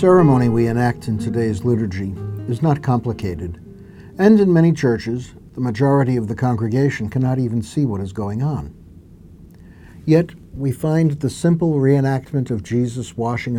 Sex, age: male, 60-79